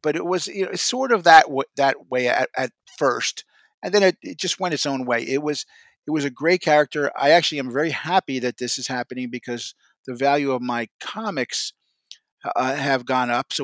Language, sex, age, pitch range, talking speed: English, male, 50-69, 125-165 Hz, 220 wpm